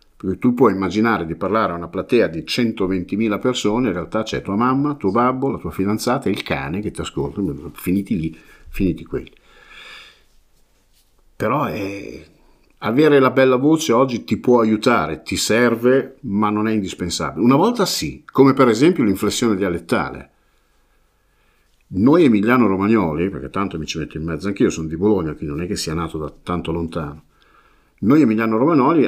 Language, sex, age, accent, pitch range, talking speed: Italian, male, 50-69, native, 85-120 Hz, 170 wpm